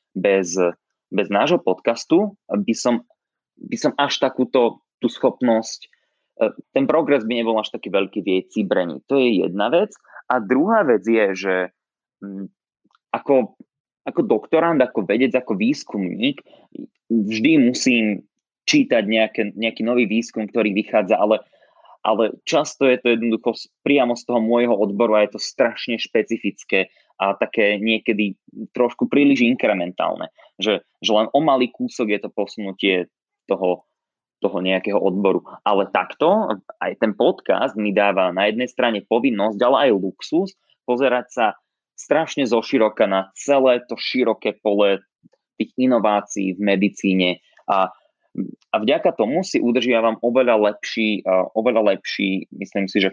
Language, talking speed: Slovak, 140 wpm